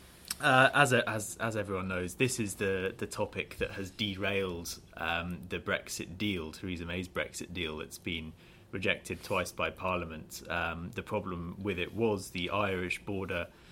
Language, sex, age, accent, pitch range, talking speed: English, male, 30-49, British, 95-110 Hz, 165 wpm